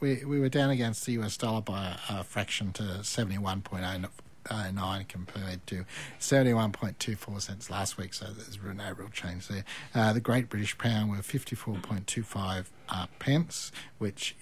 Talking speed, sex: 150 wpm, male